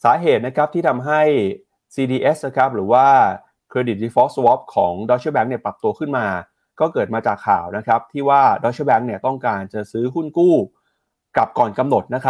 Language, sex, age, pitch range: Thai, male, 30-49, 105-135 Hz